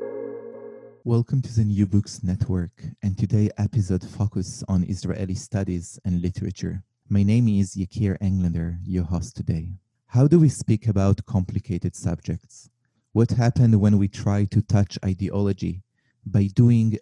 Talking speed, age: 140 wpm, 30-49